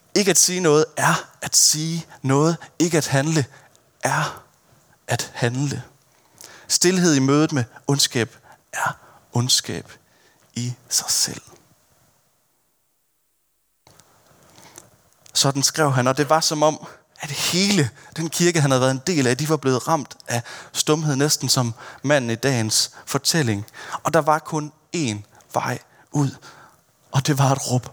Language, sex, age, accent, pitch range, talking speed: Danish, male, 30-49, native, 125-155 Hz, 140 wpm